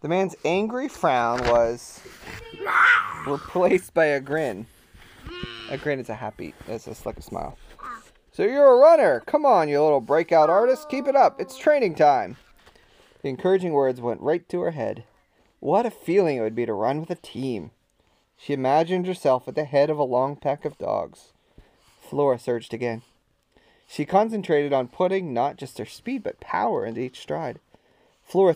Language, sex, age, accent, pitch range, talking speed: English, male, 30-49, American, 125-180 Hz, 175 wpm